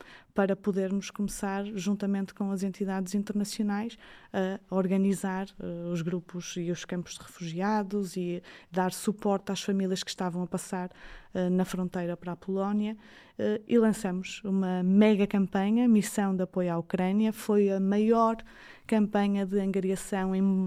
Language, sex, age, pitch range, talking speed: Portuguese, female, 20-39, 185-210 Hz, 140 wpm